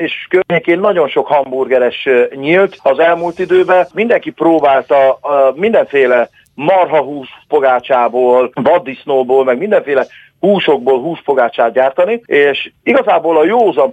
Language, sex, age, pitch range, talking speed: Hungarian, male, 40-59, 135-180 Hz, 110 wpm